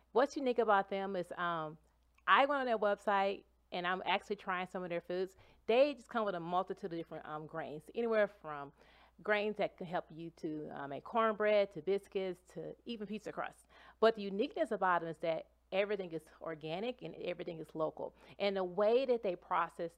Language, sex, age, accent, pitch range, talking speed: English, female, 30-49, American, 165-210 Hz, 200 wpm